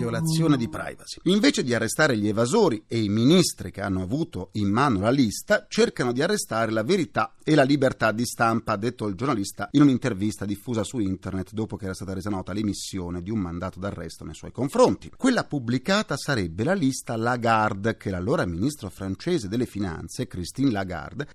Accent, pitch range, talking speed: native, 105-170 Hz, 185 wpm